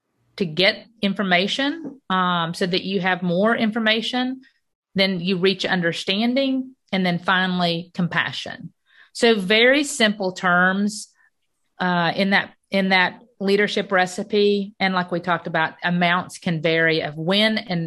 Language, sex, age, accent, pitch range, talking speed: English, female, 40-59, American, 175-210 Hz, 135 wpm